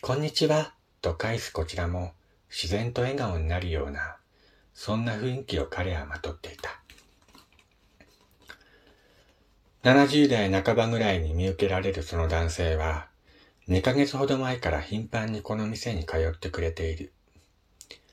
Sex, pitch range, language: male, 85-115 Hz, Japanese